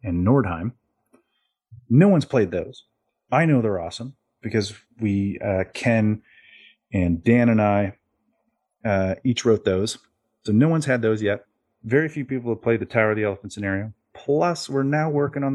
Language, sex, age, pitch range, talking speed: English, male, 30-49, 95-115 Hz, 170 wpm